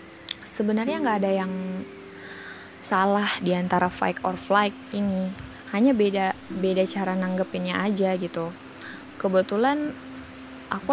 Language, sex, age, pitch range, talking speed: Indonesian, female, 20-39, 175-195 Hz, 110 wpm